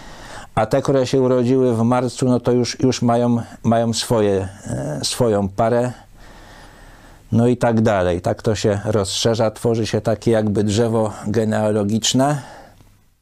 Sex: male